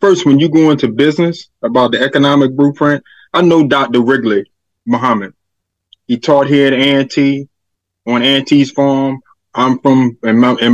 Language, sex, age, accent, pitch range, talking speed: English, male, 20-39, American, 120-155 Hz, 145 wpm